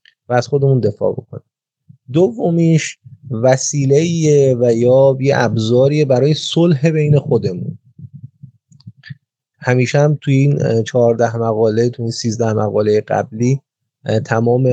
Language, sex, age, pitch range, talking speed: Persian, male, 30-49, 115-140 Hz, 105 wpm